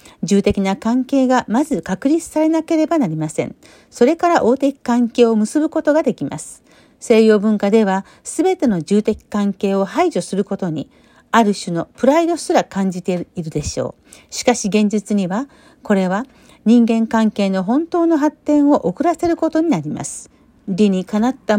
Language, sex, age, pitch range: Japanese, female, 50-69, 195-275 Hz